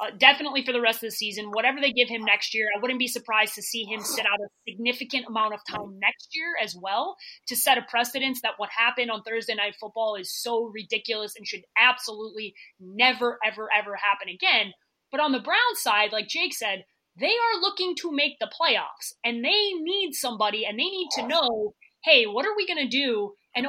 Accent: American